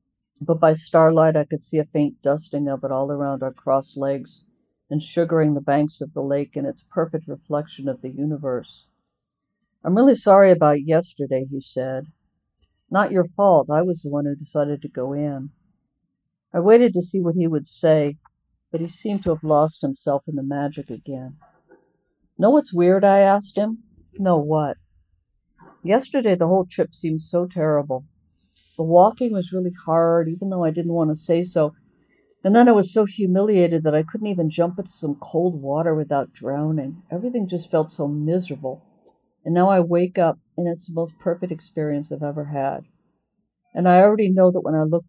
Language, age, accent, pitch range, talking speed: English, 60-79, American, 145-180 Hz, 185 wpm